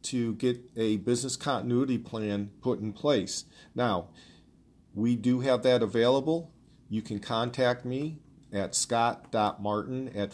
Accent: American